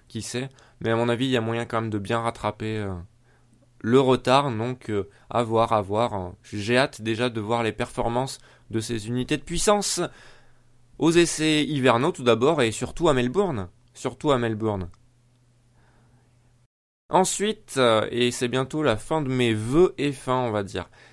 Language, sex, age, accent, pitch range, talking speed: French, male, 20-39, French, 115-145 Hz, 180 wpm